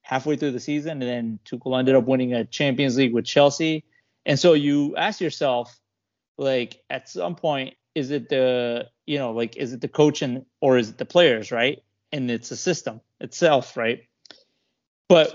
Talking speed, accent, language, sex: 190 wpm, American, English, male